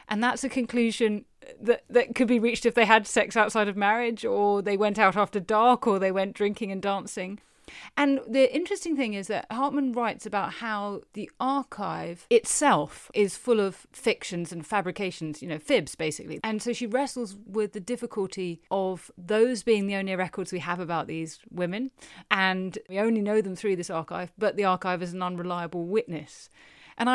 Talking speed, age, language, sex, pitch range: 190 wpm, 30-49, English, female, 180-230 Hz